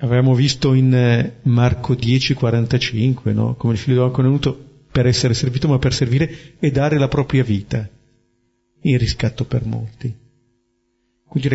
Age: 40-59